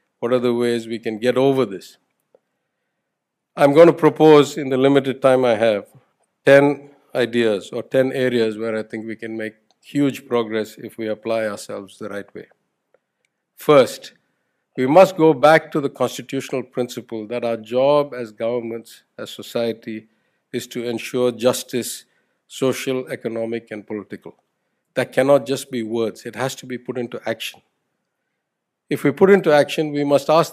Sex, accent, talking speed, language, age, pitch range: male, Indian, 160 wpm, English, 50-69, 120-150 Hz